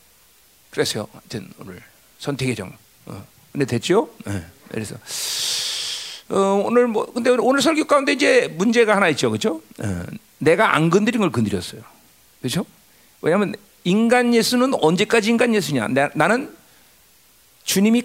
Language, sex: Korean, male